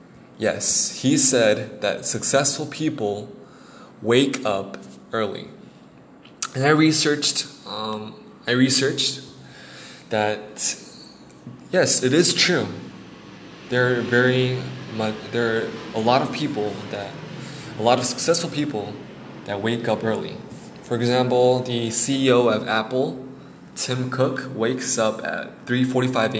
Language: English